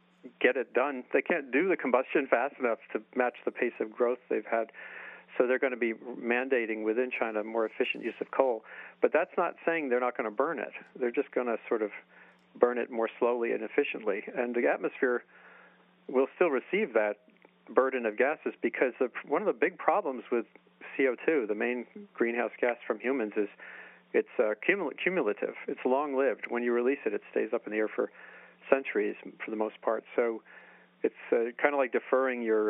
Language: English